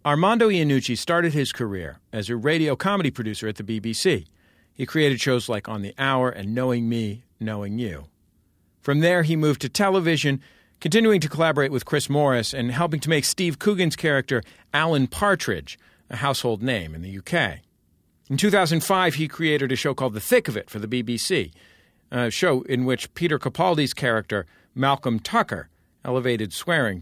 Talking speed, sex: 170 wpm, male